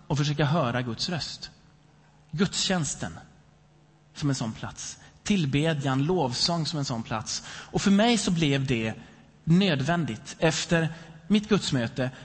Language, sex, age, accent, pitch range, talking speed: Swedish, male, 30-49, native, 135-175 Hz, 125 wpm